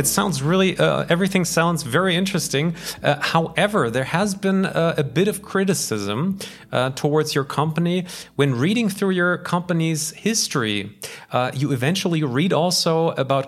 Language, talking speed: English, 150 wpm